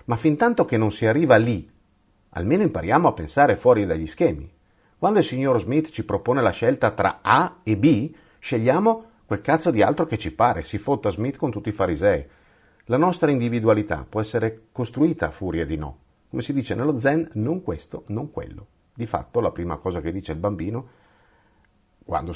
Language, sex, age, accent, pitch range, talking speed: Italian, male, 50-69, native, 95-145 Hz, 190 wpm